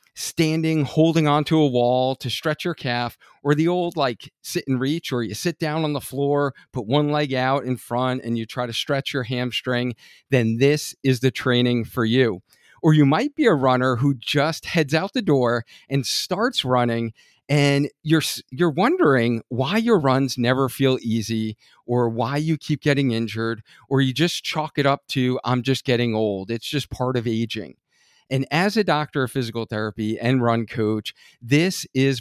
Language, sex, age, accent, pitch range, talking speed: English, male, 40-59, American, 120-150 Hz, 190 wpm